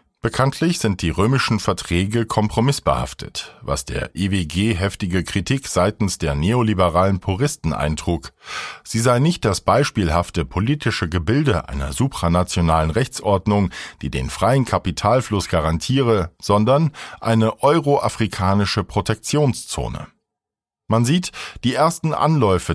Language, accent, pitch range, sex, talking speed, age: German, German, 90-130 Hz, male, 105 wpm, 50-69